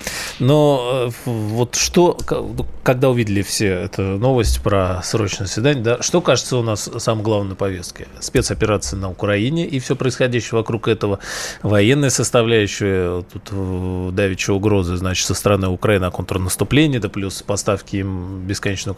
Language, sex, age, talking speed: Russian, male, 20-39, 140 wpm